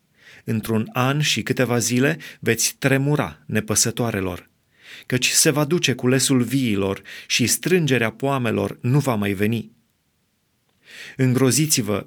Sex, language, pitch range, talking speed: male, Romanian, 115-140 Hz, 110 wpm